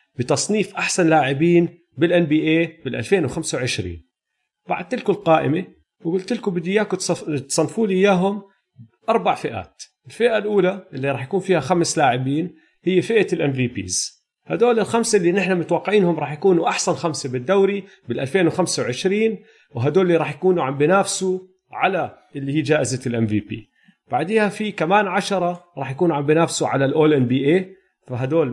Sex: male